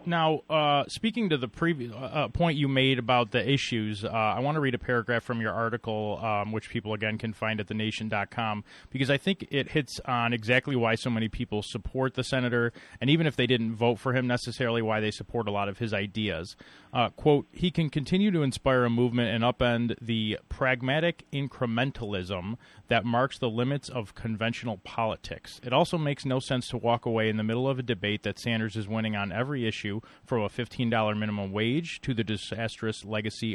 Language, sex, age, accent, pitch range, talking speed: English, male, 30-49, American, 110-135 Hz, 200 wpm